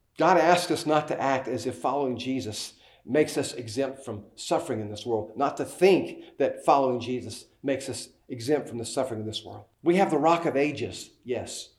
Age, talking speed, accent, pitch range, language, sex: 40-59, 205 wpm, American, 125-160 Hz, English, male